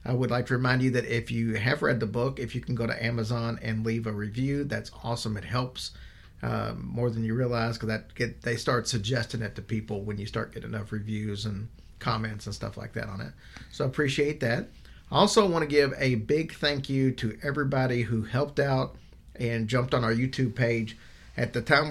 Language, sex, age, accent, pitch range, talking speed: English, male, 40-59, American, 110-130 Hz, 220 wpm